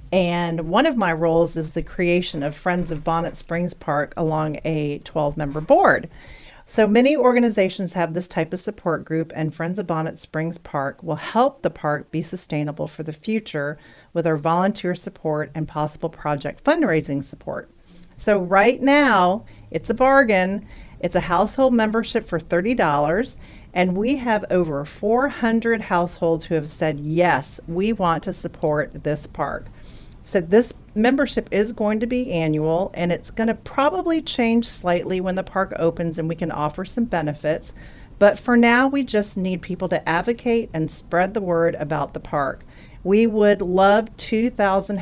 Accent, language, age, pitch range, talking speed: American, English, 40-59, 160-210 Hz, 165 wpm